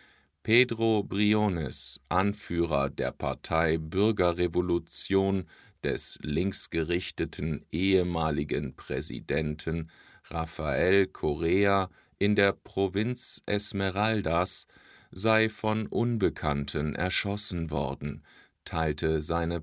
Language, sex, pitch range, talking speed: English, male, 80-105 Hz, 70 wpm